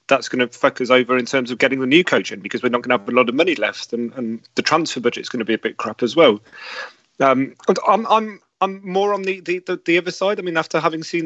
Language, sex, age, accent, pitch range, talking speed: English, male, 30-49, British, 135-170 Hz, 305 wpm